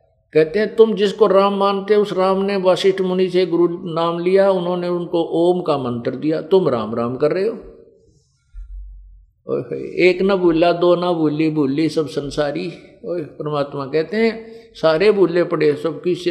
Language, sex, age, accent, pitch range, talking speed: Hindi, male, 50-69, native, 115-175 Hz, 170 wpm